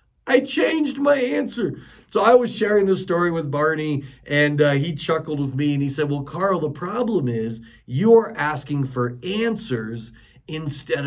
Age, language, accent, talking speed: 40-59, English, American, 170 wpm